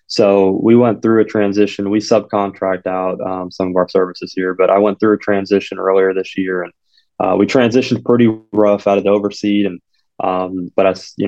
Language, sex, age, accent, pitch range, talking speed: English, male, 20-39, American, 95-100 Hz, 205 wpm